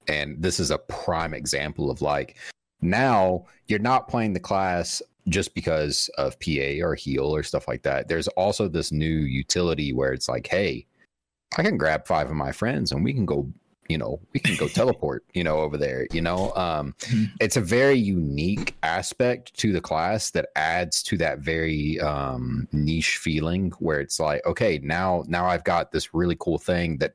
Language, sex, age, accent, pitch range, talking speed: English, male, 30-49, American, 75-95 Hz, 190 wpm